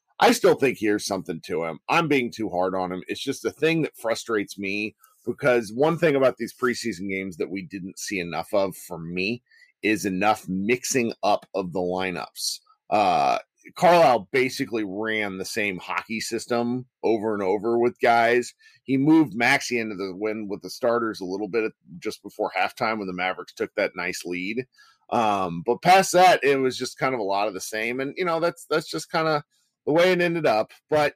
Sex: male